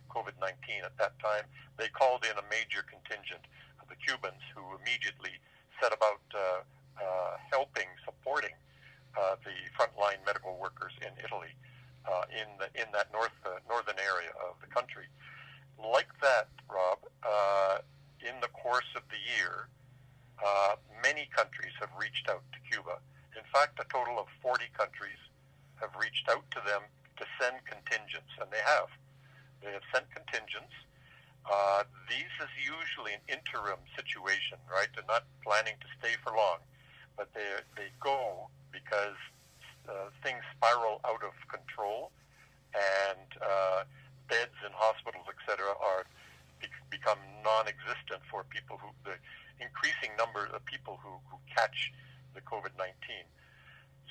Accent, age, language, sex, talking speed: American, 60-79, English, male, 145 wpm